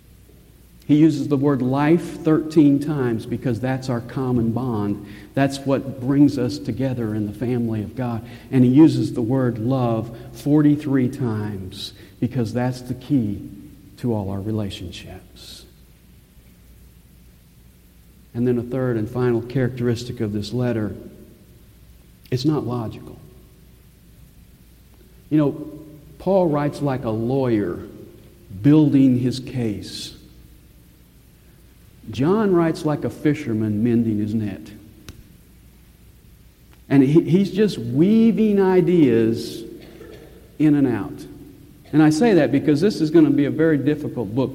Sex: male